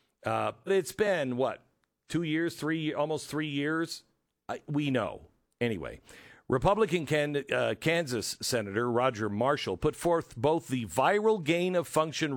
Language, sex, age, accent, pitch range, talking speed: English, male, 50-69, American, 110-155 Hz, 130 wpm